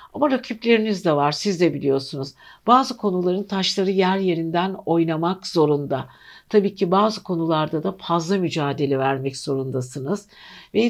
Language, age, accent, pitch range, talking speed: Turkish, 60-79, native, 160-210 Hz, 130 wpm